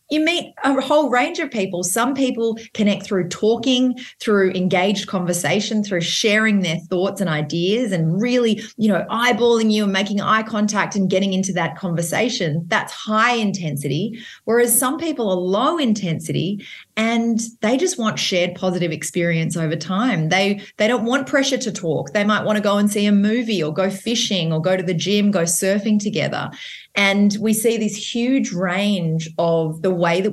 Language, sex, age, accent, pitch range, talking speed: English, female, 30-49, Australian, 175-225 Hz, 180 wpm